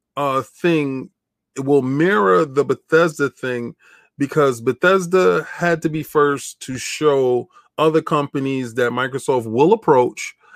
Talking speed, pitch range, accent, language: 120 wpm, 115-145 Hz, American, English